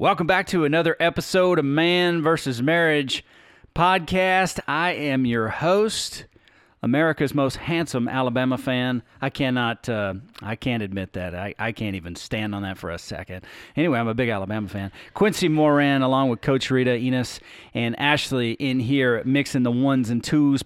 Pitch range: 115-145 Hz